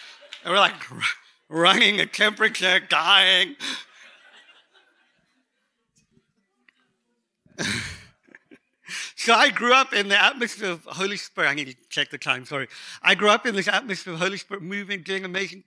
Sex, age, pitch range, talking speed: male, 50-69, 170-240 Hz, 140 wpm